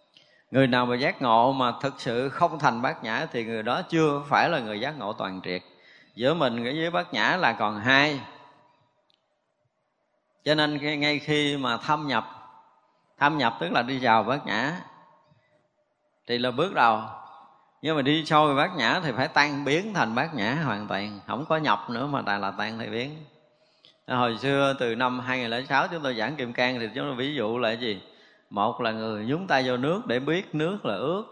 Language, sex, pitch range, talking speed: Vietnamese, male, 115-150 Hz, 200 wpm